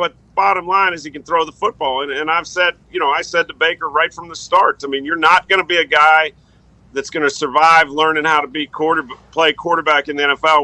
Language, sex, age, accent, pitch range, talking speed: English, male, 40-59, American, 150-175 Hz, 255 wpm